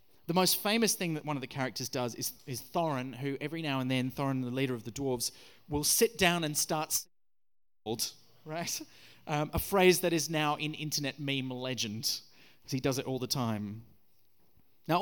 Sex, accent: male, Australian